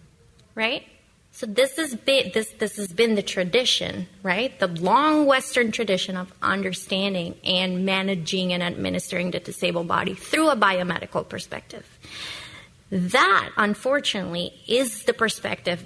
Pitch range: 185-245 Hz